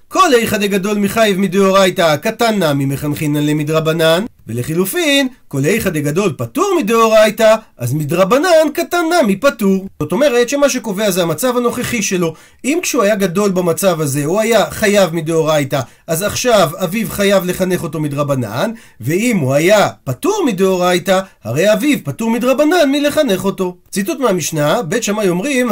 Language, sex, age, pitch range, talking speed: Hebrew, male, 40-59, 165-230 Hz, 140 wpm